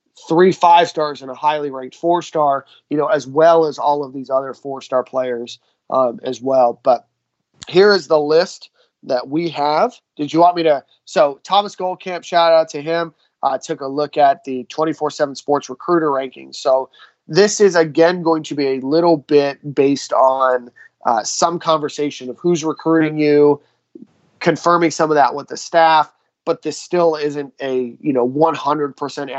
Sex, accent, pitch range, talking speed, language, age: male, American, 135-165 Hz, 180 wpm, English, 30-49